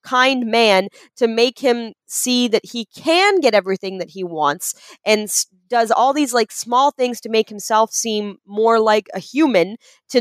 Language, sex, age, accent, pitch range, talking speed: English, female, 20-39, American, 195-260 Hz, 175 wpm